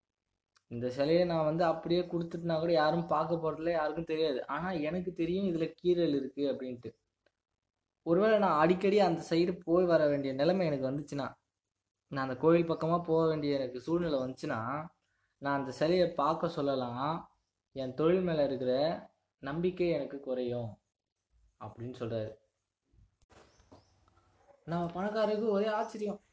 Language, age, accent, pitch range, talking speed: Tamil, 20-39, native, 125-170 Hz, 130 wpm